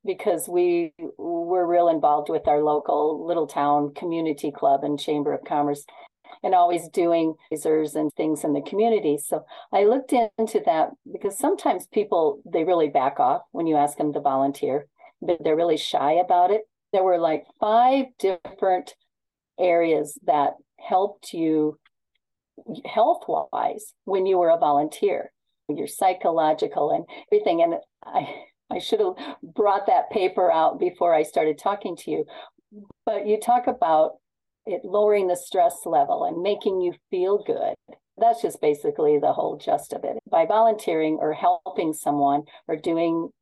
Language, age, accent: English, 40-59, American